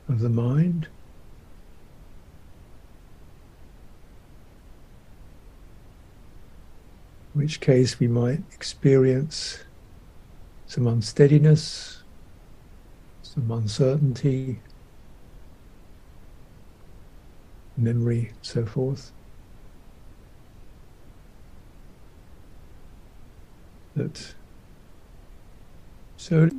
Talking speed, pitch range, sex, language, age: 45 wpm, 95-145 Hz, male, English, 60-79